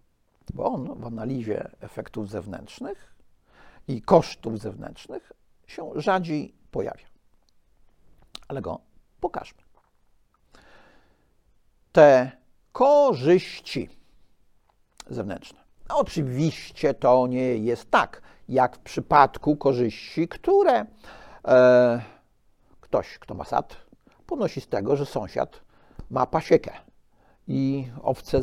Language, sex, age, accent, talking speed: Polish, male, 50-69, native, 90 wpm